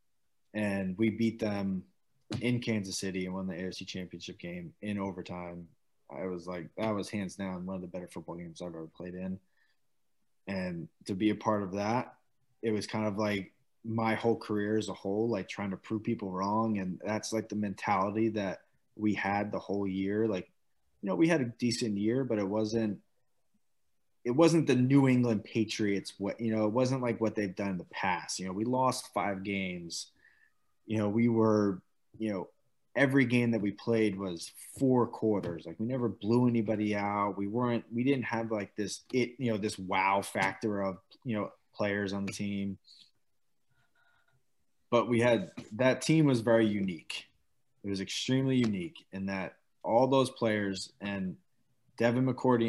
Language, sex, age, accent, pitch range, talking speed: English, male, 20-39, American, 95-120 Hz, 185 wpm